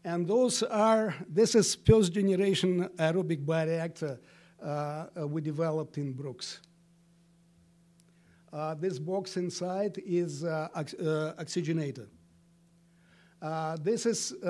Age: 60-79